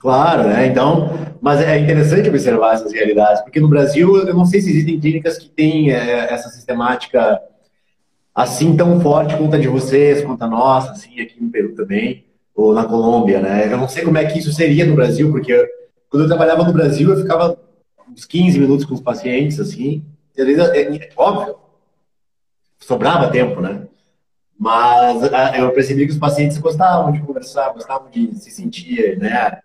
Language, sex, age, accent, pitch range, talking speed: Portuguese, male, 30-49, Brazilian, 130-165 Hz, 185 wpm